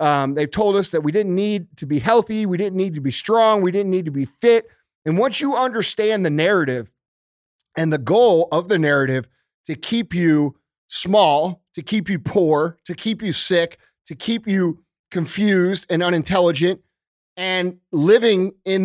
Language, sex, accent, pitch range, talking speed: English, male, American, 150-205 Hz, 180 wpm